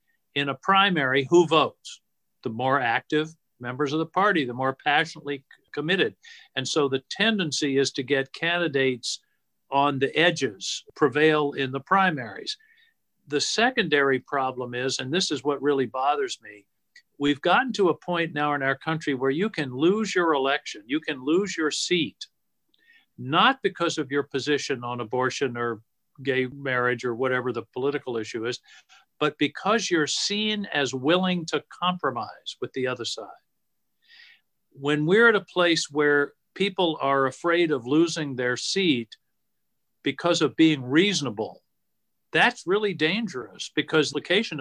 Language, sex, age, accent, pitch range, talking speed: English, male, 50-69, American, 135-180 Hz, 150 wpm